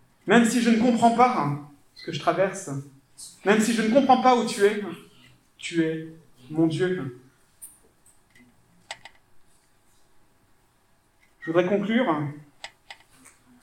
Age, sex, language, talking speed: 40-59, male, French, 115 wpm